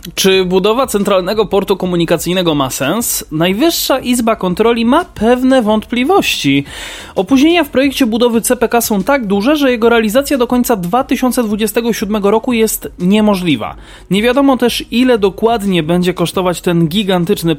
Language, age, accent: Polish, 20-39, native